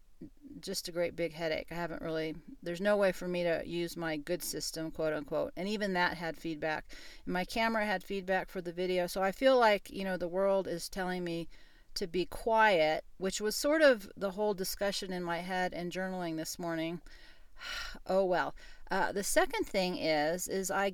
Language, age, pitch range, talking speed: English, 40-59, 170-210 Hz, 195 wpm